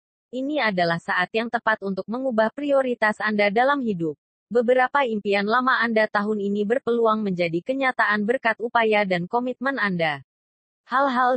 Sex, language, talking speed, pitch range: female, Indonesian, 135 wpm, 190-245 Hz